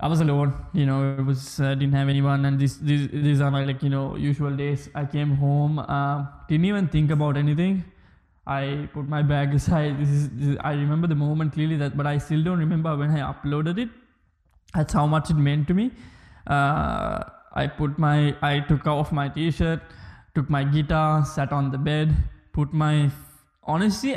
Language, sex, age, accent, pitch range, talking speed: English, male, 20-39, Indian, 140-160 Hz, 200 wpm